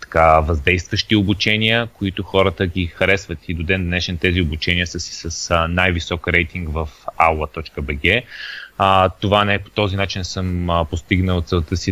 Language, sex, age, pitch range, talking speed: Bulgarian, male, 30-49, 85-105 Hz, 145 wpm